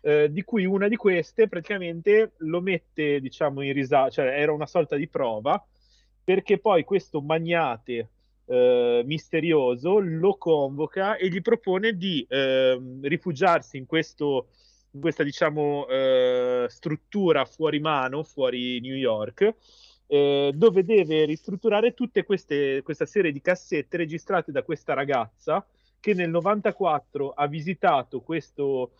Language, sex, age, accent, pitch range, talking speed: Italian, male, 30-49, native, 130-185 Hz, 130 wpm